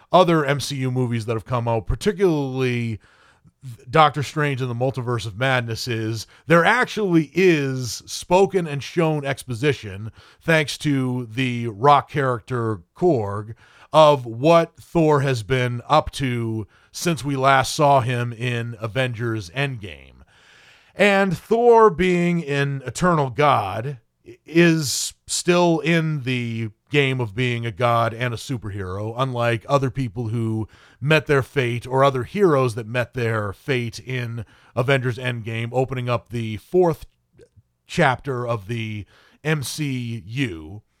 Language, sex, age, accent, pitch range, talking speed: English, male, 30-49, American, 115-160 Hz, 125 wpm